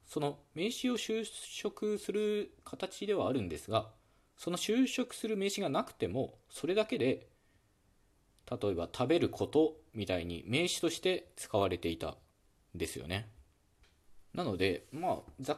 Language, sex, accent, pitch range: Japanese, male, native, 100-150 Hz